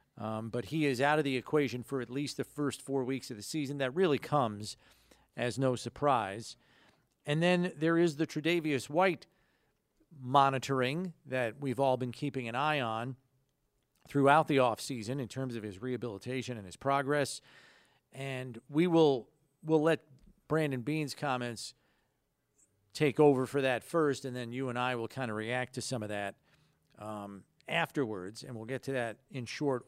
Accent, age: American, 40-59